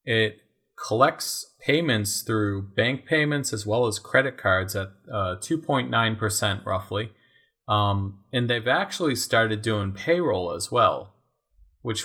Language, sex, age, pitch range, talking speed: English, male, 30-49, 100-125 Hz, 125 wpm